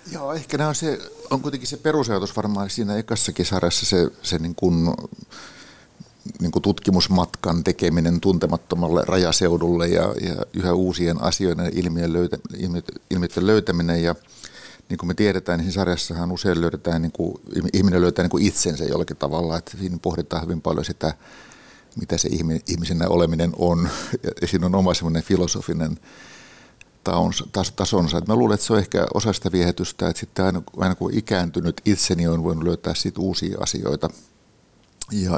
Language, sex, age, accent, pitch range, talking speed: Finnish, male, 60-79, native, 85-95 Hz, 150 wpm